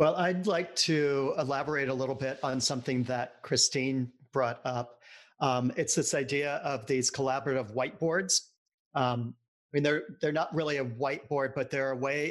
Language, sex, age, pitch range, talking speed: English, male, 40-59, 125-145 Hz, 170 wpm